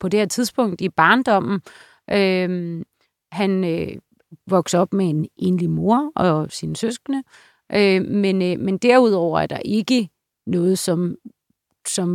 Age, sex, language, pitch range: 30-49, female, Danish, 175-205 Hz